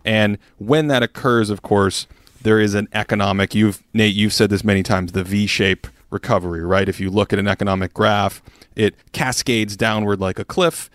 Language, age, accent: English, 30-49, American